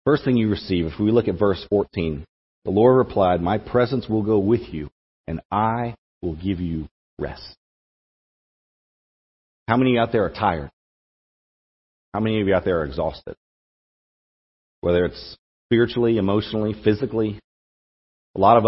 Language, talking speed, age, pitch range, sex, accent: English, 155 wpm, 40-59, 75-105 Hz, male, American